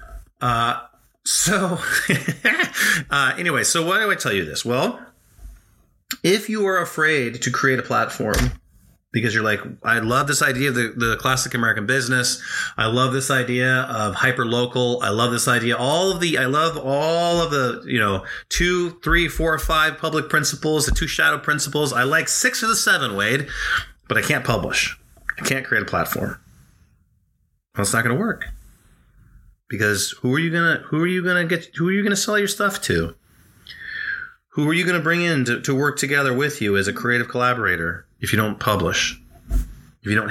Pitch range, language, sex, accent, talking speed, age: 110-160 Hz, English, male, American, 195 wpm, 30-49